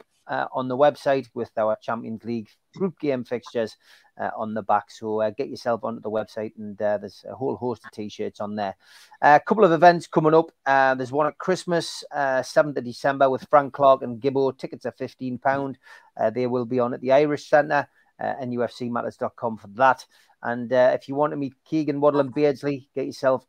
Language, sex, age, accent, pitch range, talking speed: English, male, 30-49, British, 120-145 Hz, 210 wpm